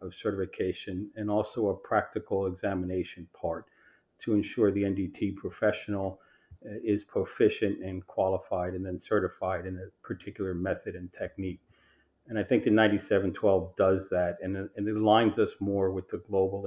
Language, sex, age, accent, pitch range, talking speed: English, male, 50-69, American, 95-105 Hz, 150 wpm